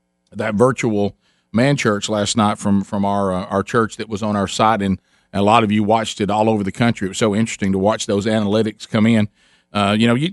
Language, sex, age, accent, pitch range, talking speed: English, male, 40-59, American, 105-120 Hz, 245 wpm